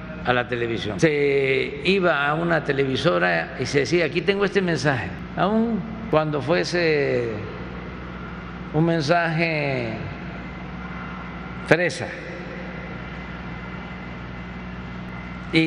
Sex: male